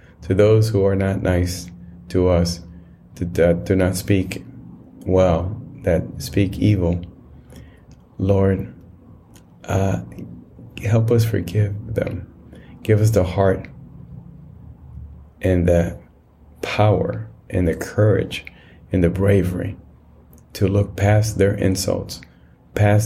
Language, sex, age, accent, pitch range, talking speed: English, male, 30-49, American, 85-100 Hz, 105 wpm